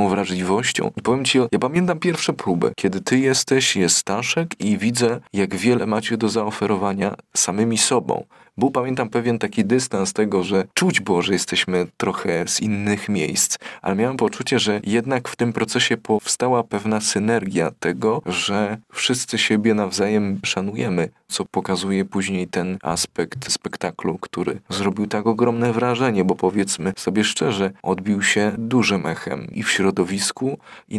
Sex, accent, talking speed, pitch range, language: male, native, 150 wpm, 95-115 Hz, Polish